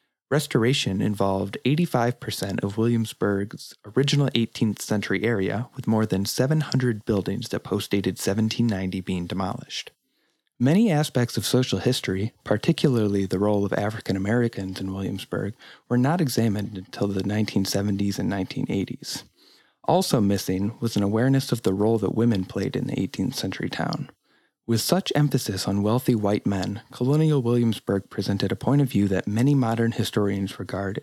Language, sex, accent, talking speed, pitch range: English, male, American, 145 wpm, 100-125 Hz